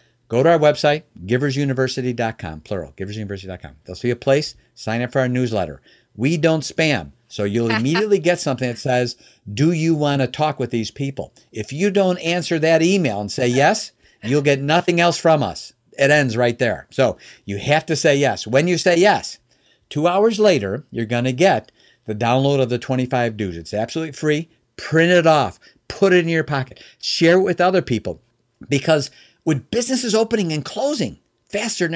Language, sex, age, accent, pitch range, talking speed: English, male, 50-69, American, 120-175 Hz, 190 wpm